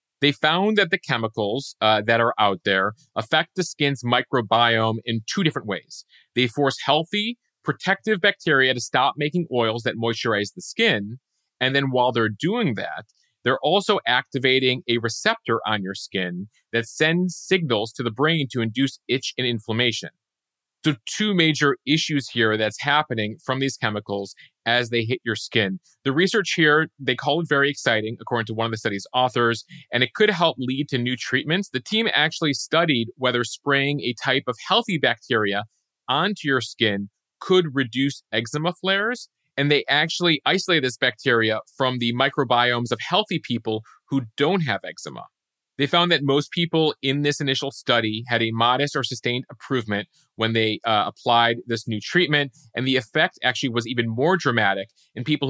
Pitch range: 115-150 Hz